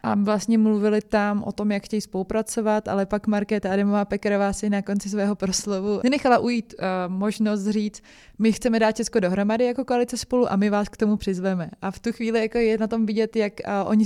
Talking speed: 215 wpm